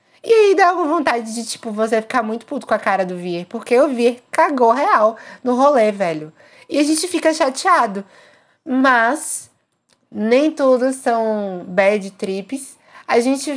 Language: Portuguese